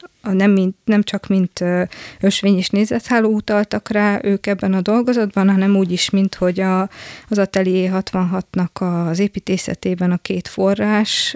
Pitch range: 180-195 Hz